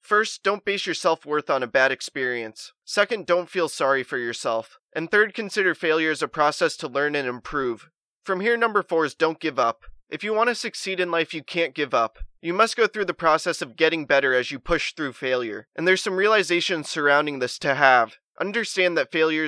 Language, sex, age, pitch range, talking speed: English, male, 20-39, 140-180 Hz, 215 wpm